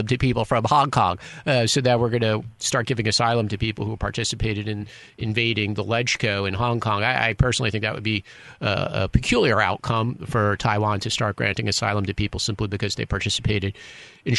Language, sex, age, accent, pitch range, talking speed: English, male, 40-59, American, 105-125 Hz, 205 wpm